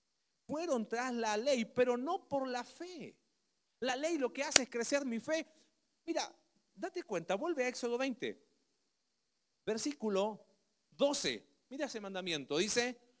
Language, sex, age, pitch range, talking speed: Spanish, male, 40-59, 195-260 Hz, 140 wpm